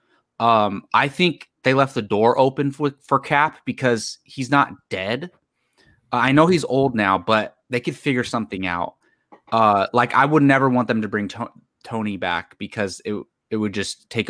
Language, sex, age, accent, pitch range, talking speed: English, male, 20-39, American, 105-135 Hz, 190 wpm